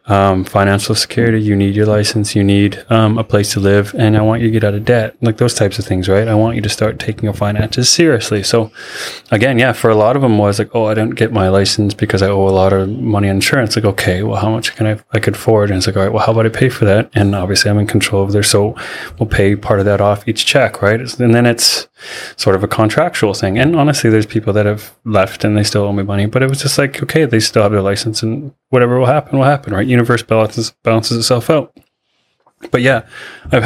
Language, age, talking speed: English, 20-39, 270 wpm